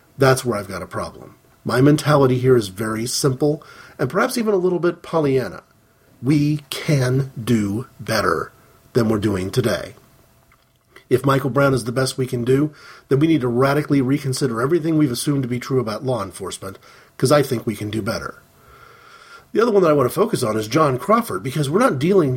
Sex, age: male, 40-59